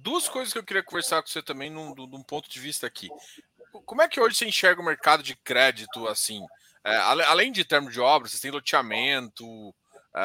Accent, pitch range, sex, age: Brazilian, 130-175 Hz, male, 20-39